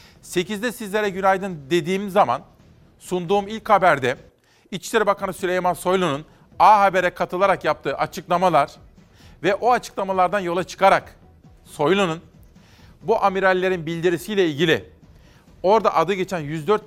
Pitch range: 155-195 Hz